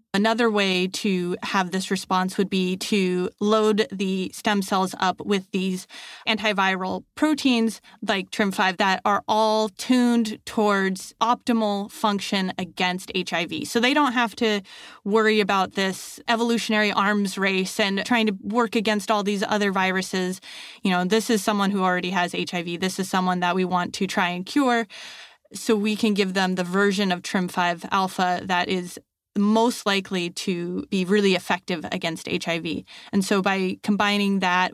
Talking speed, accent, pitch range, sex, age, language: 160 wpm, American, 185-220 Hz, female, 30-49, English